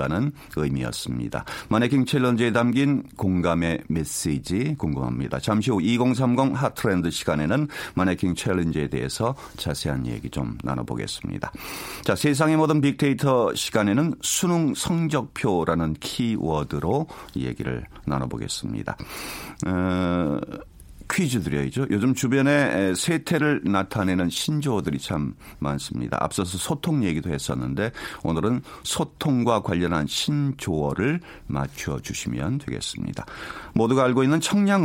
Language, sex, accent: Korean, male, native